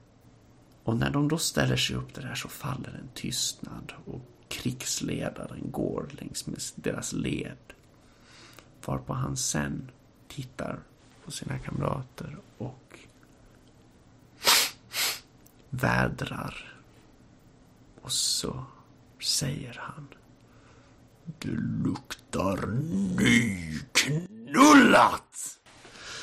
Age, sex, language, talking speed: 60-79, male, Swedish, 80 wpm